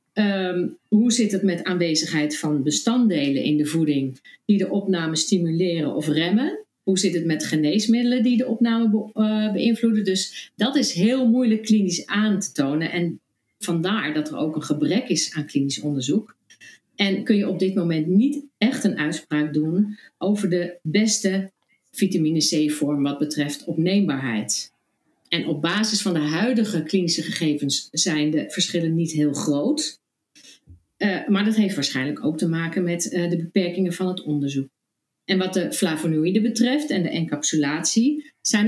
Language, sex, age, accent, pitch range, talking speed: Dutch, female, 50-69, Dutch, 155-210 Hz, 160 wpm